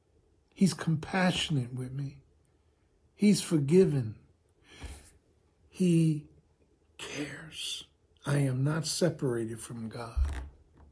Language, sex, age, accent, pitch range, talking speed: English, male, 60-79, American, 105-155 Hz, 75 wpm